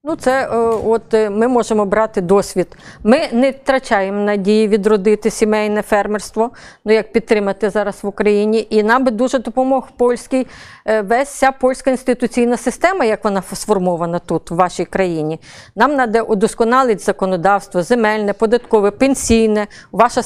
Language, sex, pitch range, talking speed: Polish, female, 205-255 Hz, 135 wpm